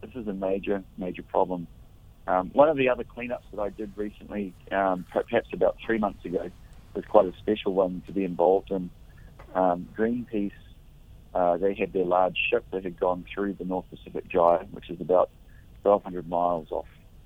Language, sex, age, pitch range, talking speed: English, male, 40-59, 90-105 Hz, 185 wpm